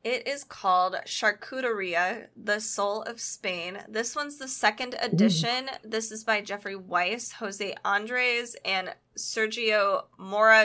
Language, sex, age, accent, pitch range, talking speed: English, female, 10-29, American, 185-230 Hz, 130 wpm